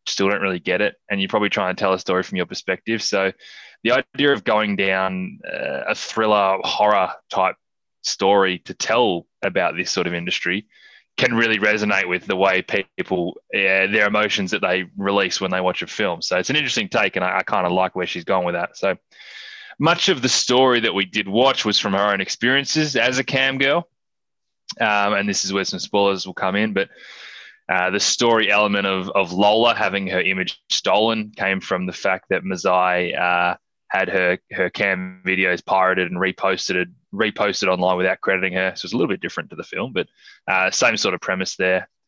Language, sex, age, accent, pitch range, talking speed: English, male, 20-39, Australian, 95-110 Hz, 205 wpm